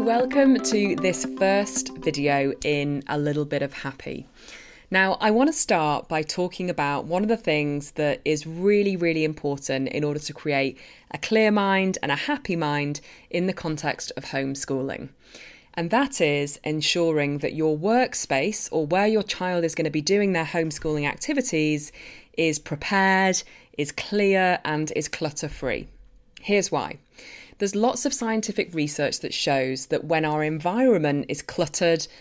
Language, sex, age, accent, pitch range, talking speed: English, female, 20-39, British, 145-210 Hz, 160 wpm